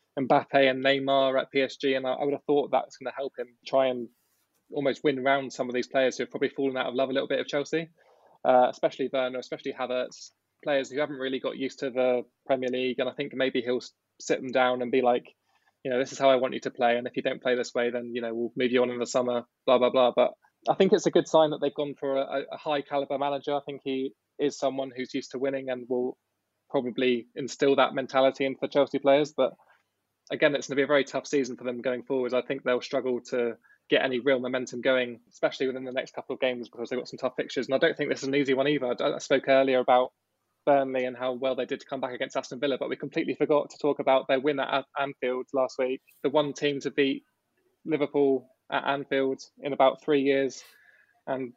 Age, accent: 20-39, British